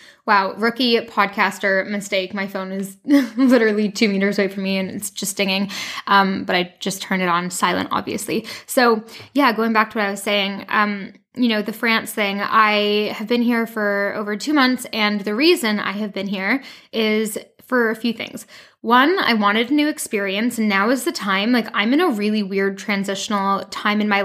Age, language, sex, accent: 10-29, English, female, American